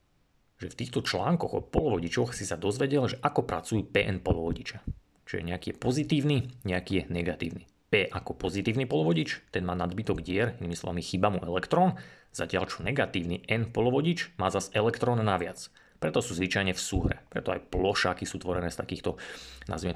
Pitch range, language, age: 85-100 Hz, Slovak, 30-49